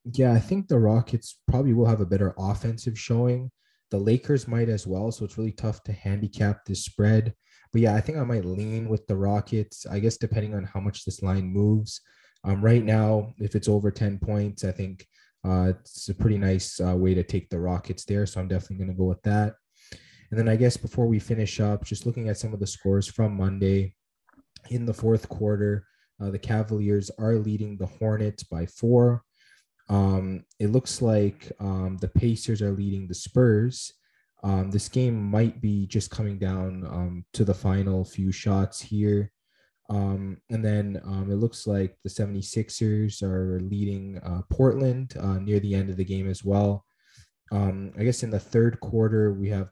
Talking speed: 195 wpm